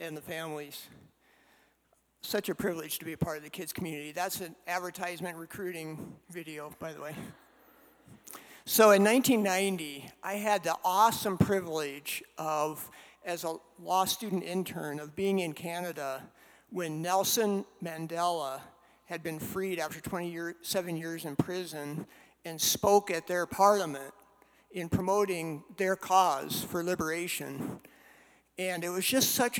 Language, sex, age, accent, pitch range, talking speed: English, male, 60-79, American, 170-210 Hz, 135 wpm